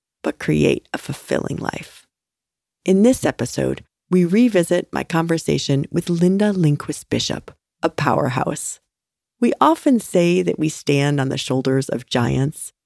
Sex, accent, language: female, American, English